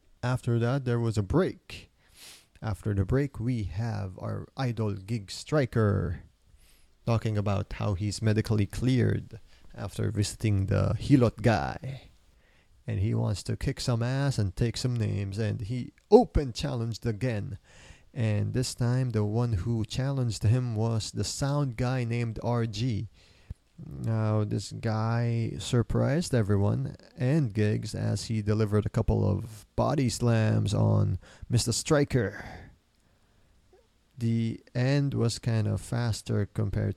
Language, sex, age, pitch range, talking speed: English, male, 30-49, 105-120 Hz, 130 wpm